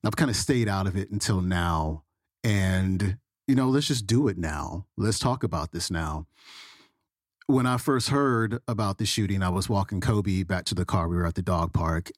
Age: 40-59